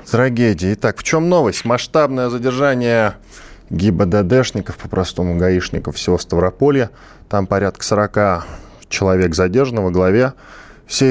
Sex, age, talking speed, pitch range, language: male, 20-39, 110 wpm, 95-130 Hz, Russian